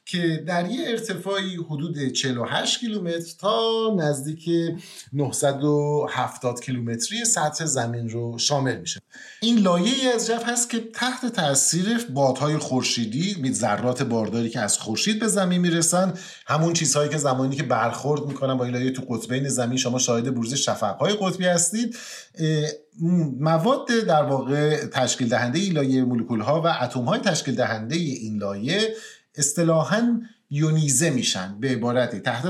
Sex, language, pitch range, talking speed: male, Persian, 125-180 Hz, 140 wpm